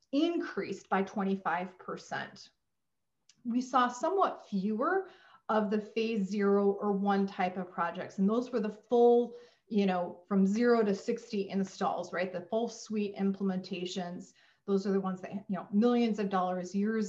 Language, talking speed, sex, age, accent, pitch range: English, 160 wpm, female, 30-49, American, 190-230 Hz